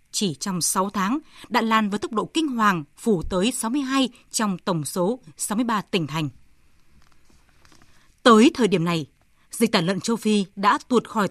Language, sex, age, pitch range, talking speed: Vietnamese, female, 20-39, 190-250 Hz, 170 wpm